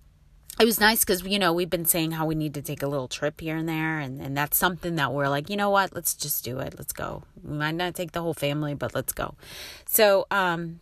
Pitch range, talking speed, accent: 150-185 Hz, 265 wpm, American